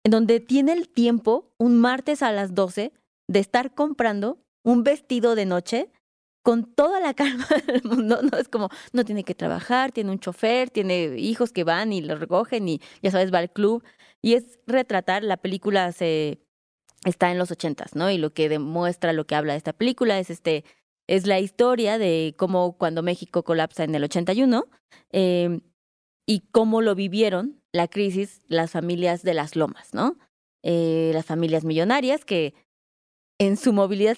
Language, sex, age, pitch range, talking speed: Spanish, female, 20-39, 175-235 Hz, 180 wpm